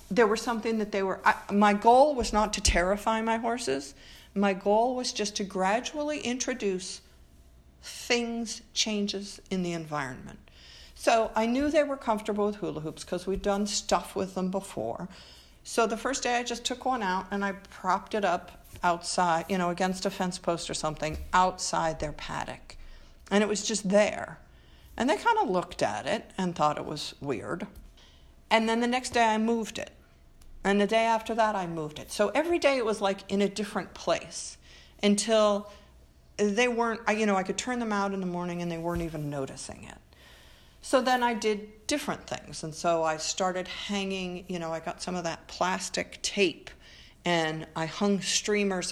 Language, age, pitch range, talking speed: English, 50-69, 160-215 Hz, 190 wpm